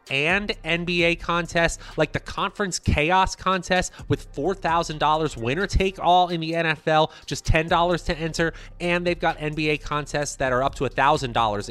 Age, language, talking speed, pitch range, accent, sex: 30-49, English, 180 wpm, 120-170 Hz, American, male